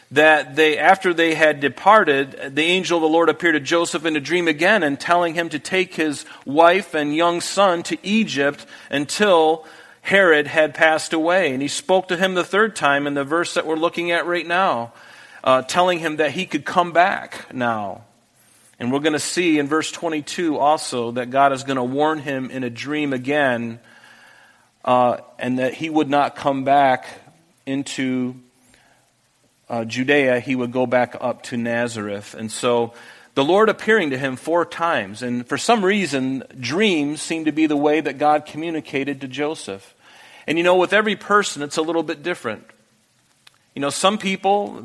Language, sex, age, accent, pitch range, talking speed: English, male, 40-59, American, 140-175 Hz, 185 wpm